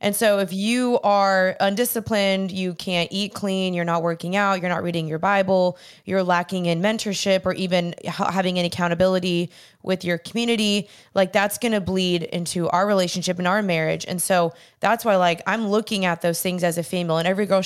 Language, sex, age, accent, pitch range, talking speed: English, female, 20-39, American, 175-210 Hz, 195 wpm